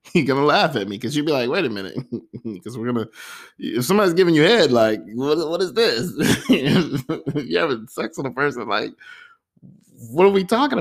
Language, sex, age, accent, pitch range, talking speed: English, male, 20-39, American, 100-125 Hz, 205 wpm